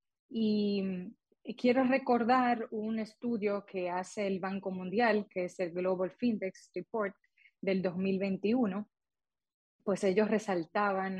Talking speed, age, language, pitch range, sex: 115 wpm, 20-39, Spanish, 180-215 Hz, female